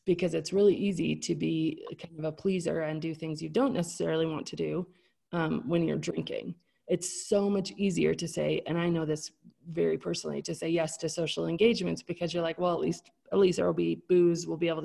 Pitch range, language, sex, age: 160-200 Hz, English, female, 30-49